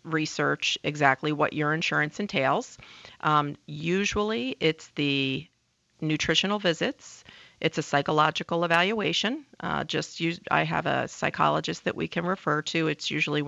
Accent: American